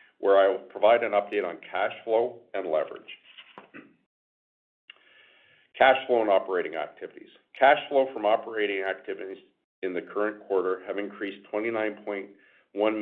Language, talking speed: English, 130 wpm